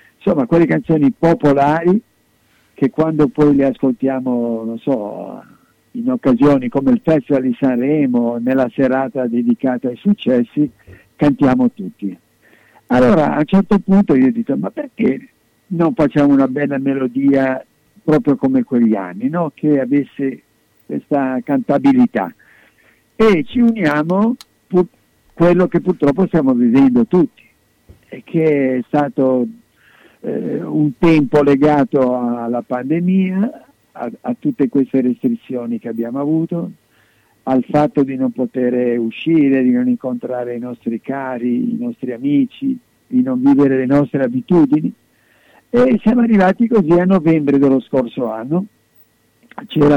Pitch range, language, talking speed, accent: 125-175 Hz, Italian, 125 wpm, native